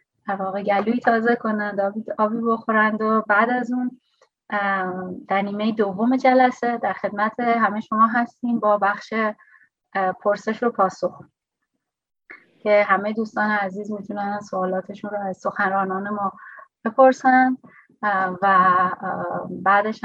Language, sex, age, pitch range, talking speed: Persian, female, 30-49, 195-240 Hz, 110 wpm